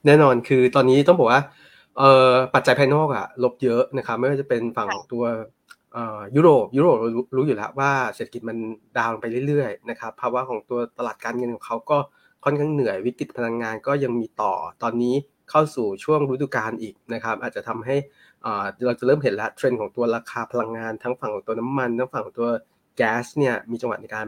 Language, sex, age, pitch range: Thai, male, 20-39, 115-135 Hz